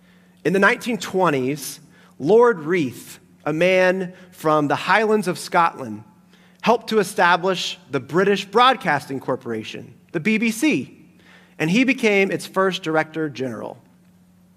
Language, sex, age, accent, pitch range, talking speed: English, male, 30-49, American, 155-200 Hz, 115 wpm